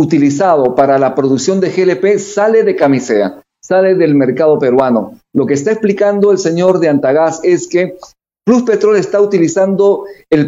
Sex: male